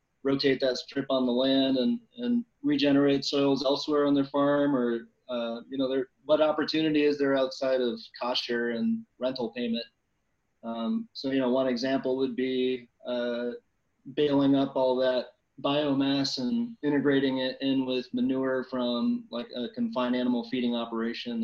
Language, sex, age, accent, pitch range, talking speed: English, male, 30-49, American, 120-135 Hz, 160 wpm